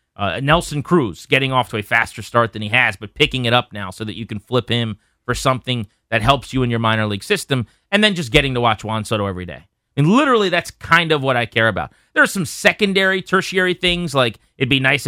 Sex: male